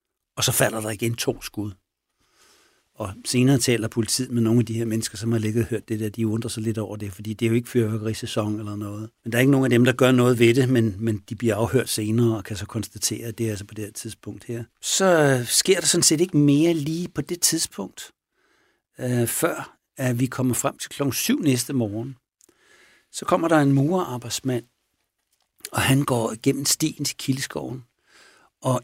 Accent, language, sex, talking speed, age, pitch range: native, Danish, male, 215 wpm, 60-79, 115-145 Hz